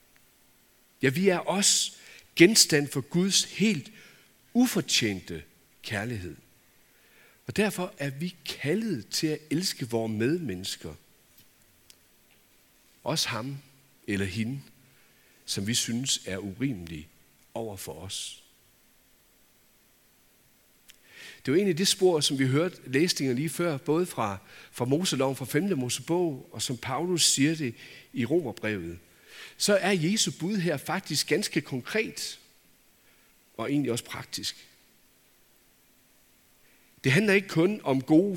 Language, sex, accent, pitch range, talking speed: Danish, male, native, 115-170 Hz, 115 wpm